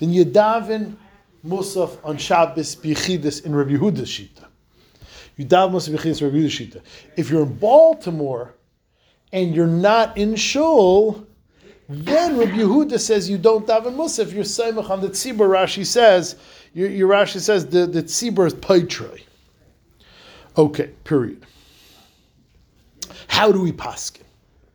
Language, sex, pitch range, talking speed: English, male, 150-215 Hz, 135 wpm